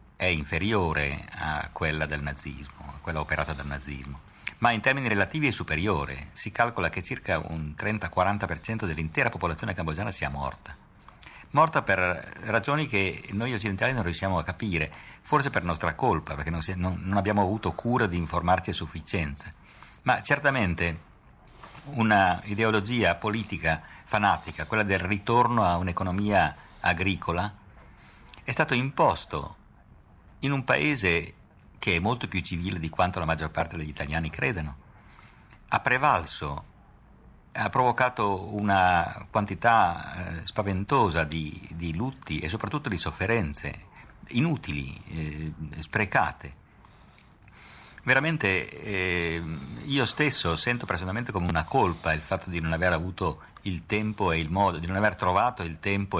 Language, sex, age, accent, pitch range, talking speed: Italian, male, 50-69, native, 80-105 Hz, 135 wpm